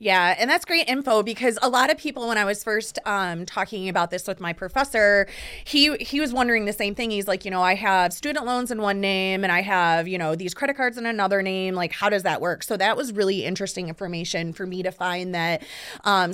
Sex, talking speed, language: female, 245 wpm, English